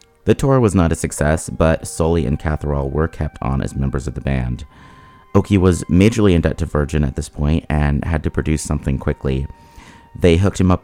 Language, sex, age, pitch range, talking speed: English, male, 30-49, 75-90 Hz, 210 wpm